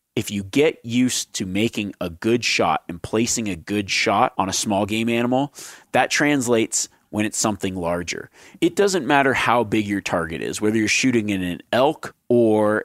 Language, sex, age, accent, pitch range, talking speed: English, male, 30-49, American, 100-125 Hz, 185 wpm